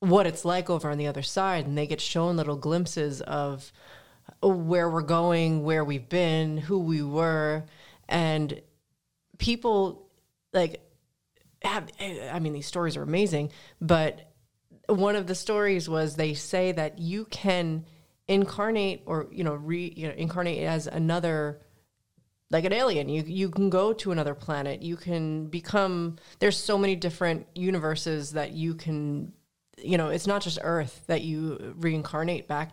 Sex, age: female, 30-49